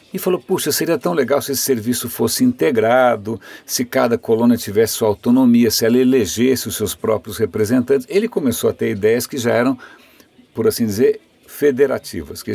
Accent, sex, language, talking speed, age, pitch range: Brazilian, male, Portuguese, 175 wpm, 60-79, 115-165 Hz